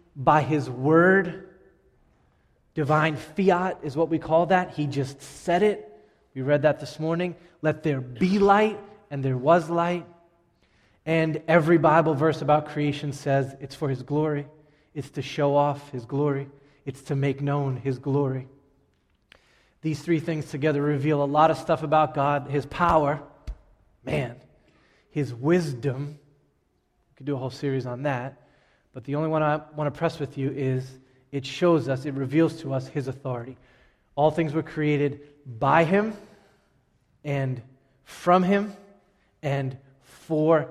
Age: 20-39